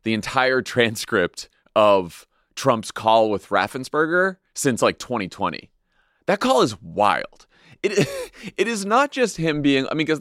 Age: 30-49